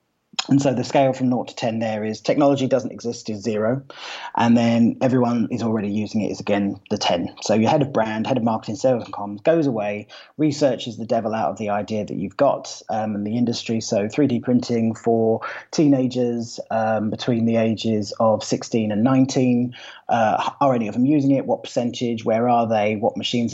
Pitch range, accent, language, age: 110-130 Hz, British, English, 30-49